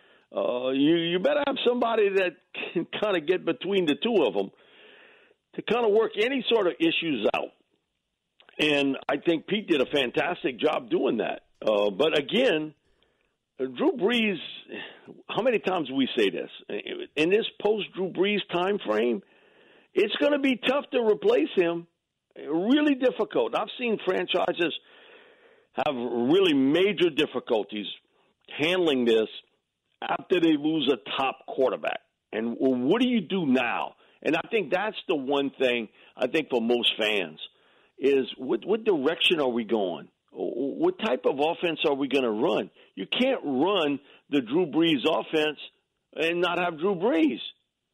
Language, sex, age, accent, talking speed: English, male, 50-69, American, 155 wpm